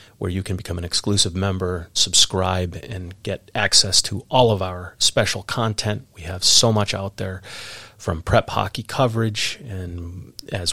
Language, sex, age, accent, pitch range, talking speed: English, male, 30-49, American, 90-110 Hz, 160 wpm